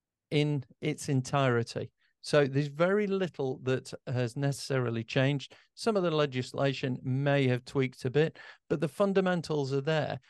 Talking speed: 145 wpm